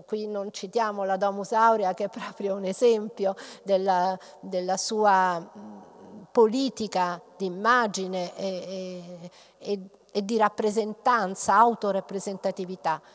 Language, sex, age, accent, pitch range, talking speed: Italian, female, 50-69, native, 195-260 Hz, 100 wpm